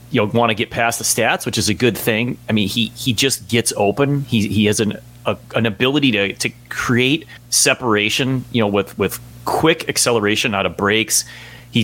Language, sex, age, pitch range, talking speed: English, male, 30-49, 100-120 Hz, 205 wpm